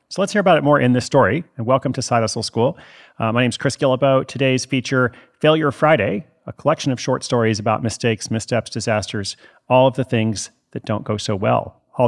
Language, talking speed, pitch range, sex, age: English, 215 wpm, 105-130 Hz, male, 40-59